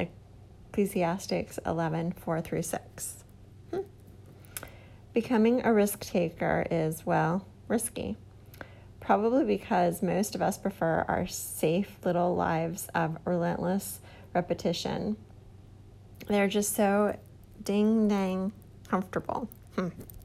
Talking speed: 95 wpm